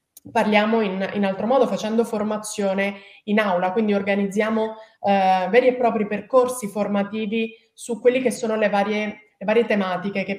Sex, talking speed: female, 150 wpm